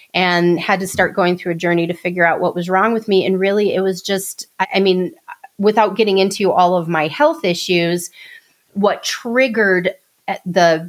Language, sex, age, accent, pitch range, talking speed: English, female, 30-49, American, 180-215 Hz, 185 wpm